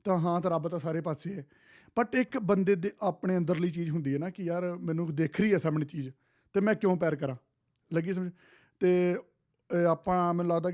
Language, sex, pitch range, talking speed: Punjabi, male, 145-180 Hz, 205 wpm